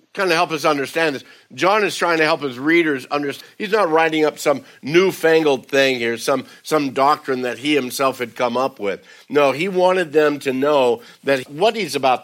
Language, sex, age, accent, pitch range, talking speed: English, male, 60-79, American, 130-160 Hz, 205 wpm